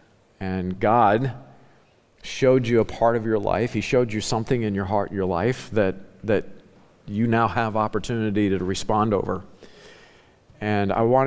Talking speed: 160 wpm